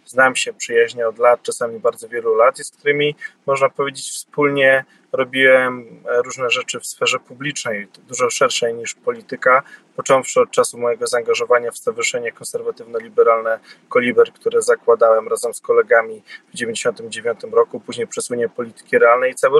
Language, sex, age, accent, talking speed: Polish, male, 20-39, native, 145 wpm